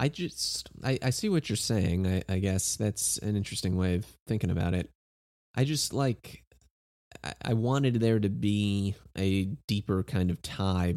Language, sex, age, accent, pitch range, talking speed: English, male, 20-39, American, 90-105 Hz, 180 wpm